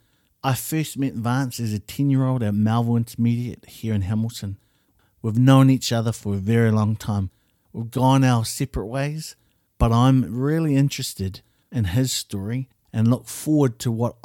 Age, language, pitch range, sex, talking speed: 50-69, English, 110-130 Hz, male, 165 wpm